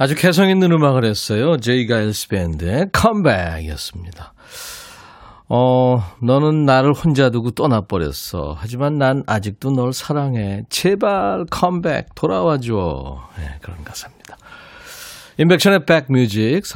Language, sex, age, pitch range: Korean, male, 40-59, 100-150 Hz